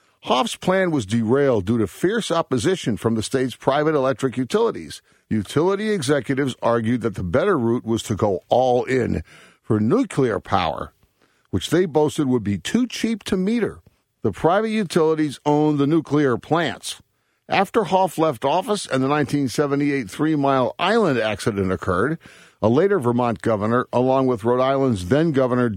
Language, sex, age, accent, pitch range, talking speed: English, male, 50-69, American, 115-165 Hz, 150 wpm